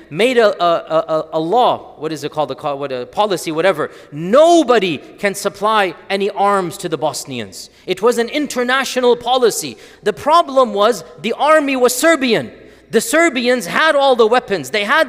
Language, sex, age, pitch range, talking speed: English, male, 40-59, 165-225 Hz, 175 wpm